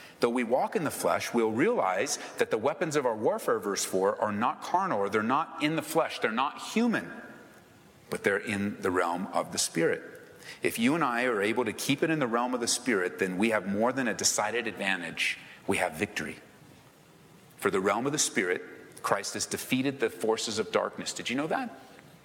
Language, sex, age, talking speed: English, male, 40-59, 215 wpm